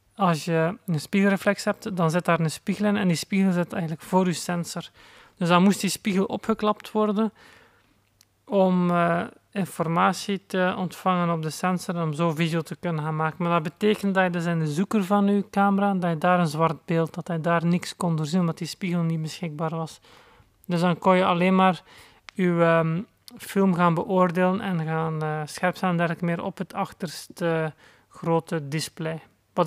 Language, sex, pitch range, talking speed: Dutch, male, 165-190 Hz, 195 wpm